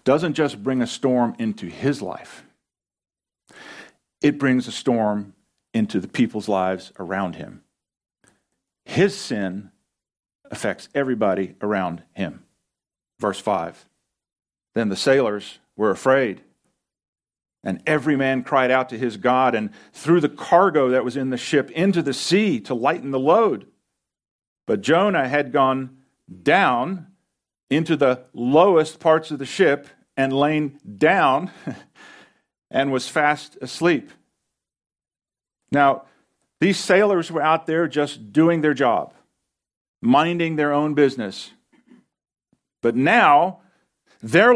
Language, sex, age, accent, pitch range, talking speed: English, male, 50-69, American, 130-160 Hz, 125 wpm